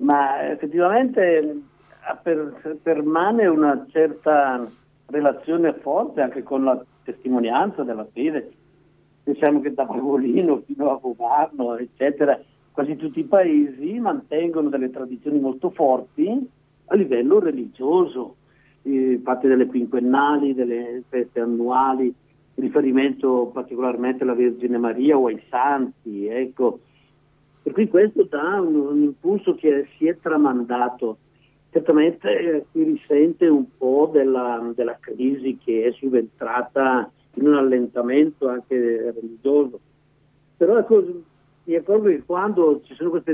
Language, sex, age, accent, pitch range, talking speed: Italian, male, 50-69, native, 130-165 Hz, 120 wpm